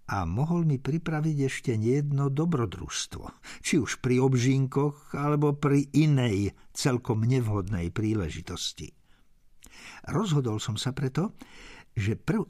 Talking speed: 110 wpm